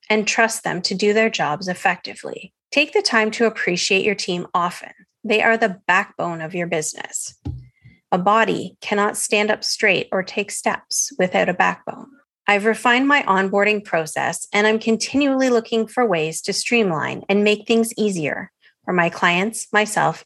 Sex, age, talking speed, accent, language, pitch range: female, 30-49, 165 wpm, American, English, 185-220 Hz